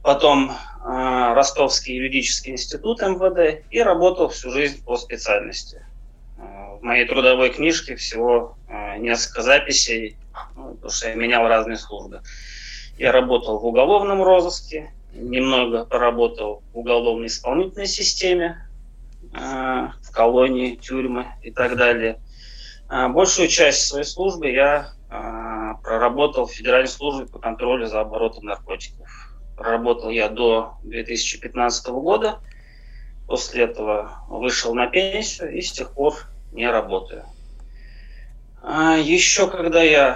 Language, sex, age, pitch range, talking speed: Russian, male, 20-39, 115-145 Hz, 110 wpm